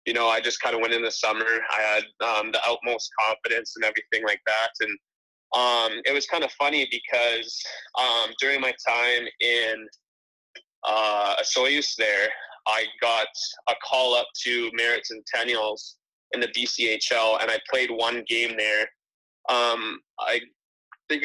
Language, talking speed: English, 160 wpm